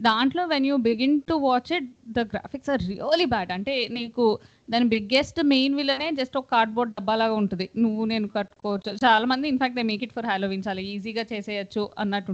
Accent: native